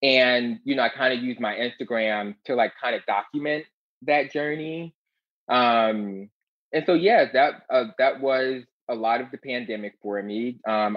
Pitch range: 105-130 Hz